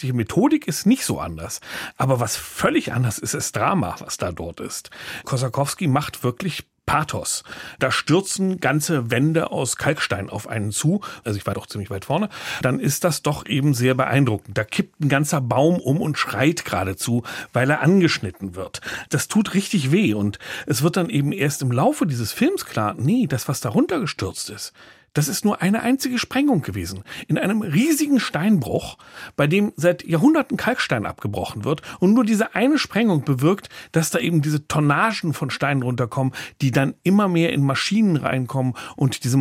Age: 40-59